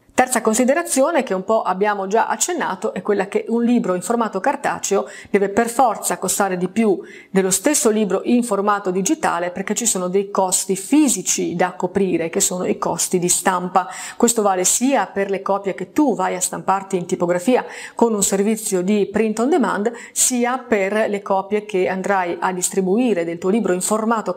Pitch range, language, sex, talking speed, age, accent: 185-225 Hz, Italian, female, 185 wpm, 30-49, native